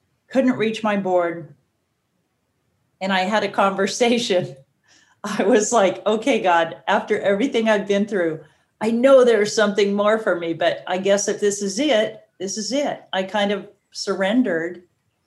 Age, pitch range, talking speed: 40-59, 170-215 Hz, 155 wpm